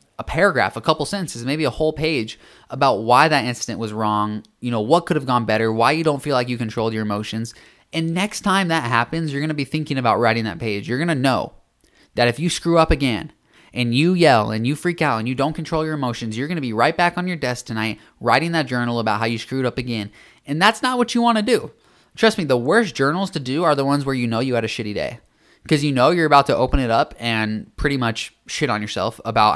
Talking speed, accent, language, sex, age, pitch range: 260 wpm, American, English, male, 20-39, 115-160 Hz